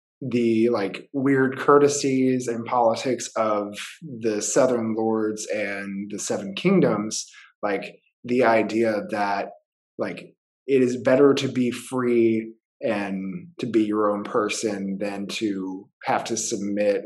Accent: American